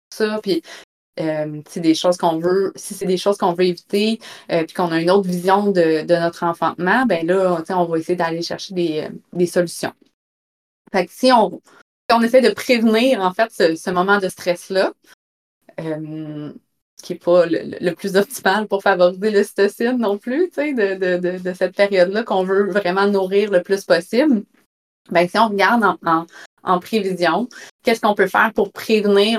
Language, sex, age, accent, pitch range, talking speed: French, female, 30-49, Canadian, 175-205 Hz, 180 wpm